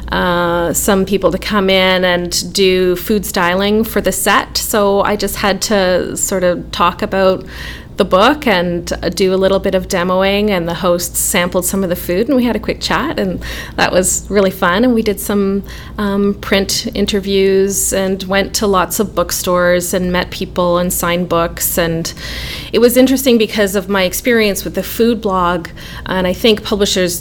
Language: English